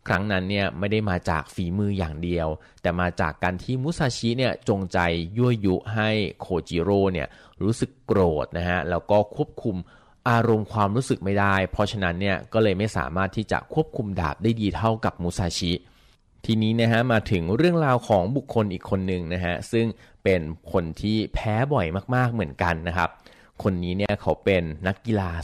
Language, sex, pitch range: Thai, male, 90-115 Hz